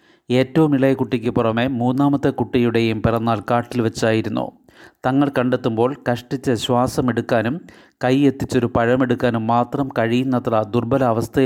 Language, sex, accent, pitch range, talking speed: Malayalam, male, native, 120-135 Hz, 100 wpm